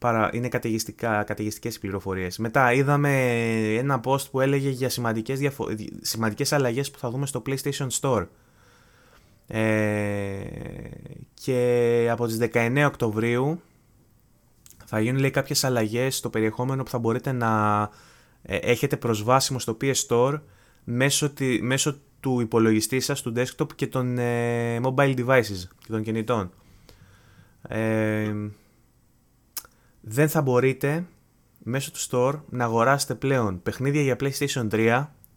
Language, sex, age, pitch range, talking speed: Greek, male, 20-39, 110-135 Hz, 115 wpm